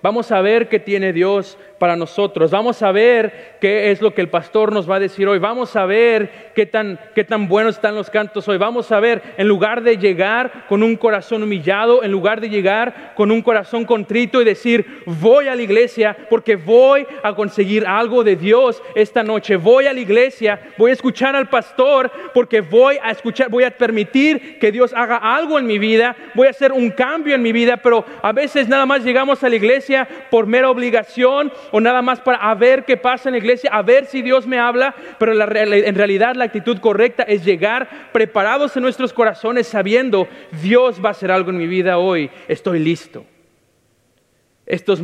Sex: male